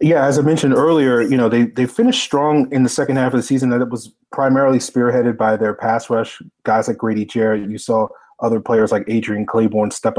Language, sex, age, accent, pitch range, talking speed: English, male, 30-49, American, 110-130 Hz, 225 wpm